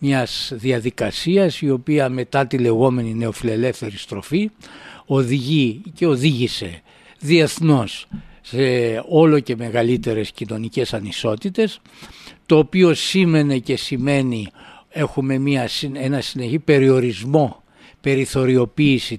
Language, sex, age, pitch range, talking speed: Greek, male, 60-79, 125-170 Hz, 90 wpm